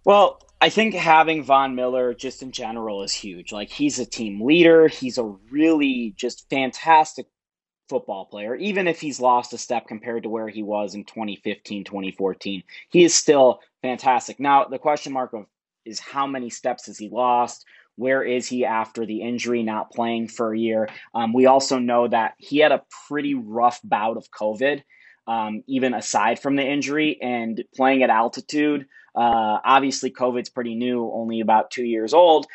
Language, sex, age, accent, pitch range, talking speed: English, male, 20-39, American, 110-135 Hz, 175 wpm